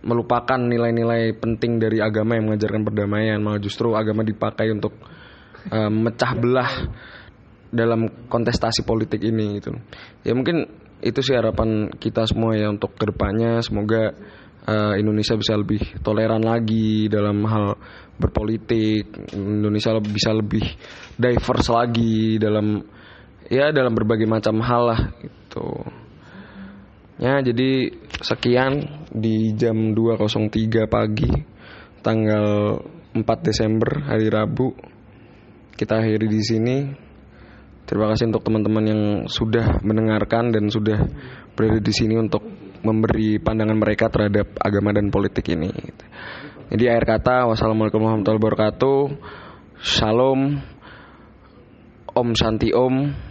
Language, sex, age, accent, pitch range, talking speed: Indonesian, male, 20-39, native, 105-115 Hz, 110 wpm